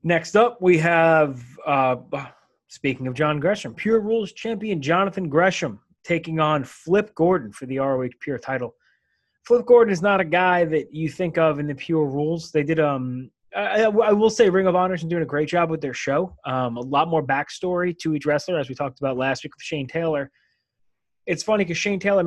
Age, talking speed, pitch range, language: 20-39, 210 wpm, 140-175 Hz, English